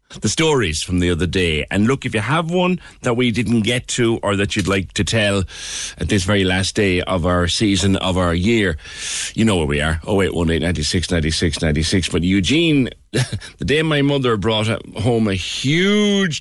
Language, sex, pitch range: English, male, 85-125 Hz